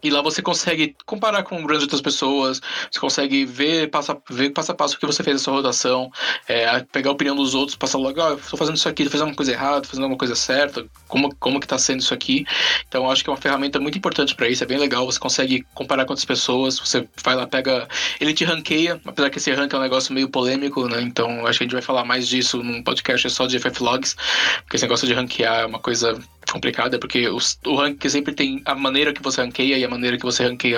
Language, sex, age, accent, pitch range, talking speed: Portuguese, male, 20-39, Brazilian, 125-145 Hz, 265 wpm